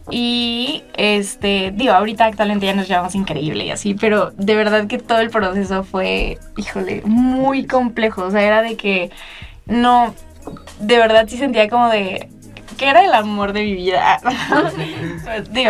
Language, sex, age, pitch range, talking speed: Spanish, female, 10-29, 195-225 Hz, 160 wpm